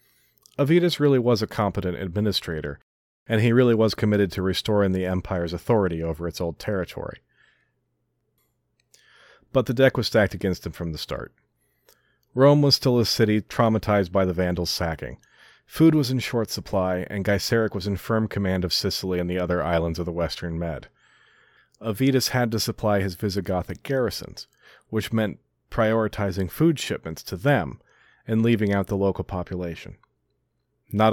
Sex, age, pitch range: male, 40-59, 90-110 Hz